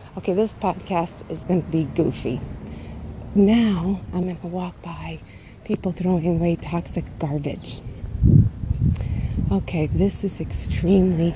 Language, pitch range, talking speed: English, 150-215 Hz, 120 wpm